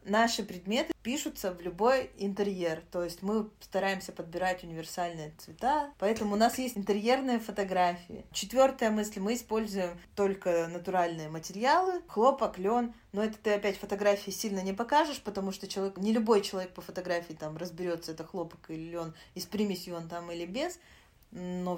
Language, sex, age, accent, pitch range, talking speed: Russian, female, 20-39, native, 180-220 Hz, 155 wpm